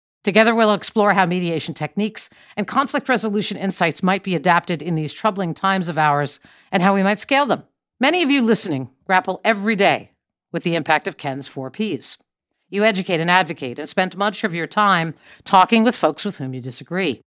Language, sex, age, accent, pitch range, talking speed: English, female, 50-69, American, 165-220 Hz, 195 wpm